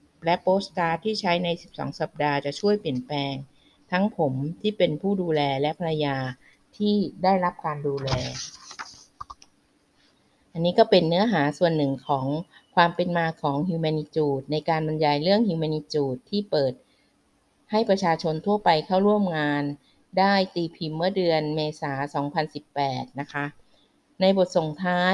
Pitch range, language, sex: 150-185 Hz, Thai, female